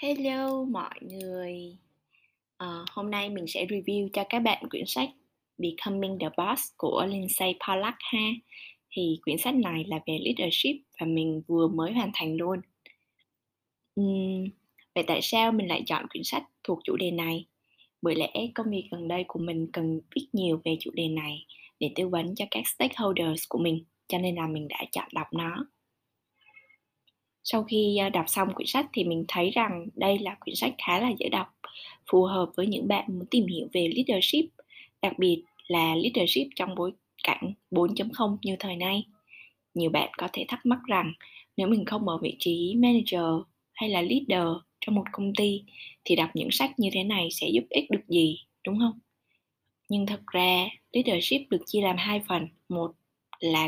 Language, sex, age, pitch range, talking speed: Vietnamese, female, 20-39, 170-210 Hz, 185 wpm